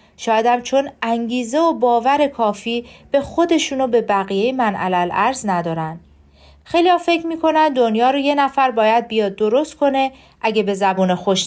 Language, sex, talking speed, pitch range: Persian, female, 145 wpm, 200-270 Hz